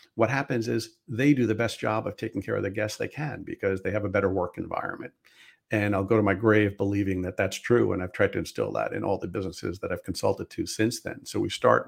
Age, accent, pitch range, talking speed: 50-69, American, 100-115 Hz, 265 wpm